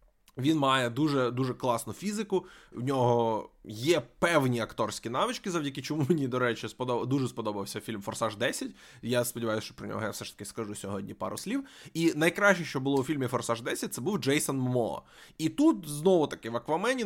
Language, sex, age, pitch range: Ukrainian, male, 20-39, 120-180 Hz